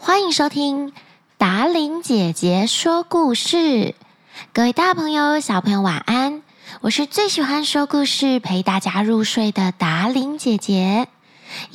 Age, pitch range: 20-39, 210-315 Hz